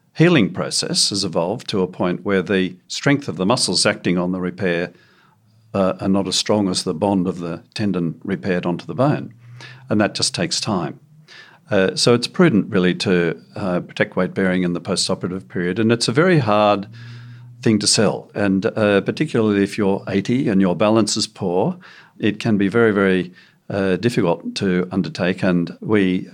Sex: male